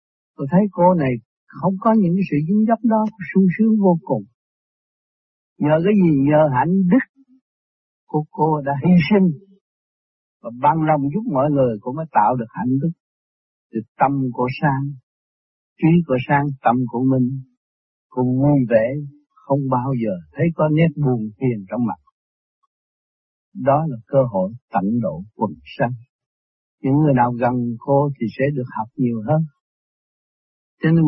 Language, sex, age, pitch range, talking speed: Vietnamese, male, 60-79, 130-175 Hz, 160 wpm